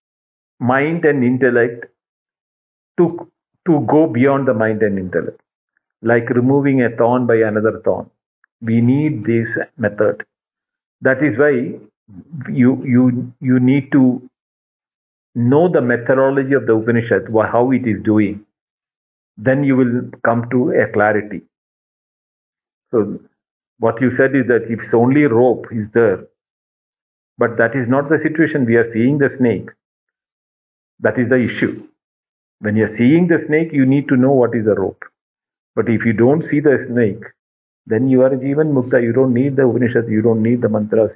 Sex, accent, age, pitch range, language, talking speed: male, Indian, 50-69, 110-130 Hz, English, 160 wpm